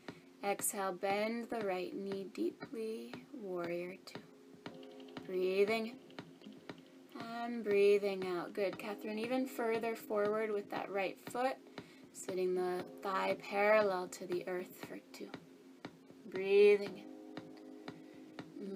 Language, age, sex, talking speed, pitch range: English, 20-39, female, 105 wpm, 190-235 Hz